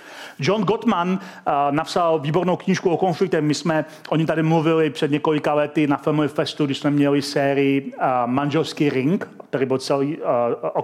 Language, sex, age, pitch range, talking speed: Czech, male, 40-59, 150-195 Hz, 175 wpm